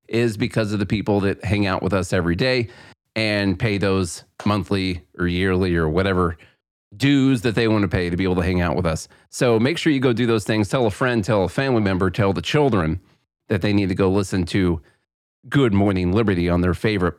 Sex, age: male, 30-49